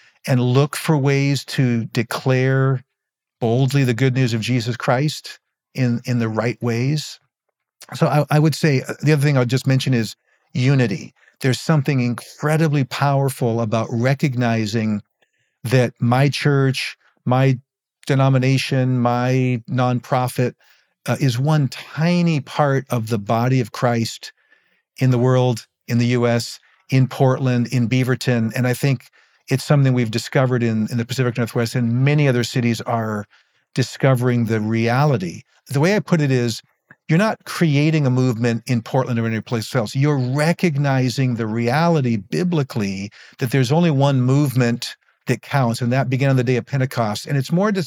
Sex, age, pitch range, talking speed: male, 50-69, 120-145 Hz, 155 wpm